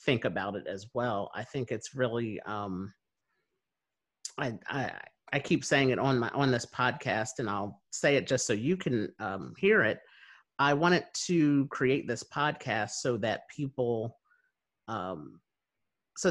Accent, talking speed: American, 160 wpm